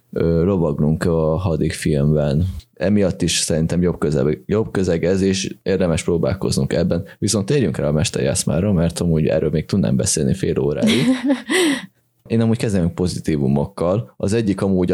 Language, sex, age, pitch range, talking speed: Hungarian, male, 20-39, 80-95 Hz, 145 wpm